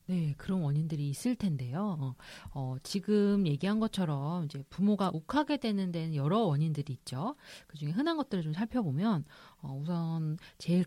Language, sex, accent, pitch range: Korean, female, native, 150-220 Hz